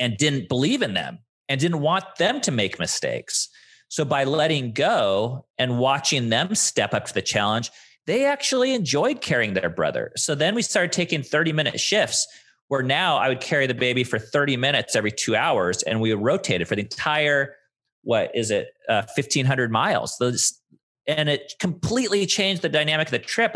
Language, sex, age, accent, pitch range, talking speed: English, male, 30-49, American, 120-160 Hz, 185 wpm